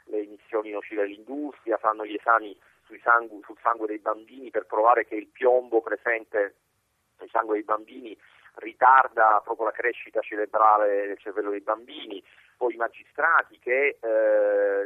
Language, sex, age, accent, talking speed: Italian, male, 40-59, native, 150 wpm